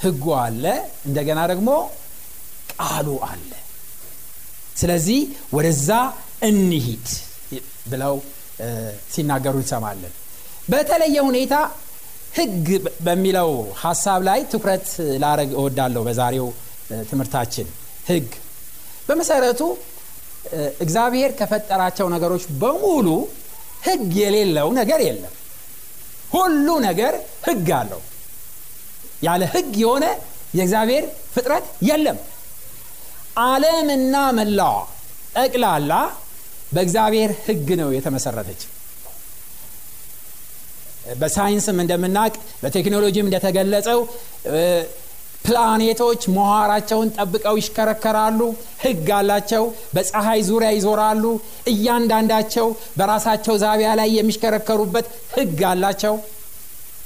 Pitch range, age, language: 160-230 Hz, 60-79, Amharic